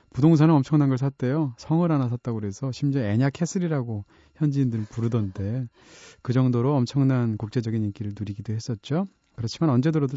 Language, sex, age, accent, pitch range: Korean, male, 30-49, native, 115-160 Hz